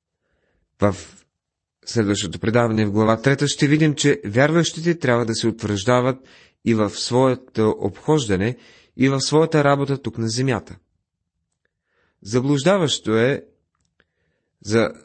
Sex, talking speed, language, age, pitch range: male, 110 wpm, Bulgarian, 30-49, 110-140 Hz